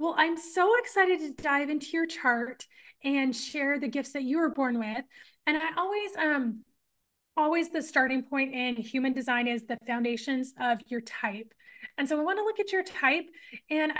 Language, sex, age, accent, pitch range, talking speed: English, female, 20-39, American, 250-310 Hz, 195 wpm